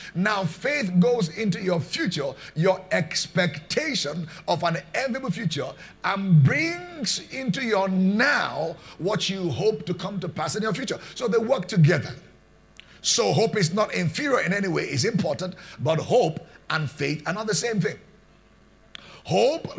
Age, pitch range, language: 50-69, 160-205 Hz, English